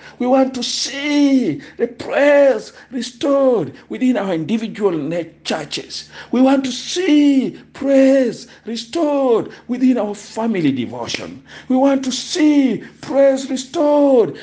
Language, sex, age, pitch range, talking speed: English, male, 50-69, 205-270 Hz, 110 wpm